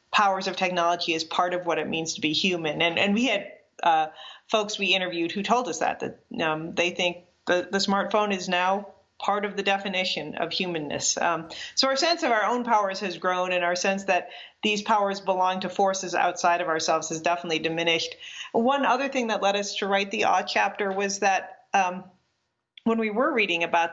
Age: 40-59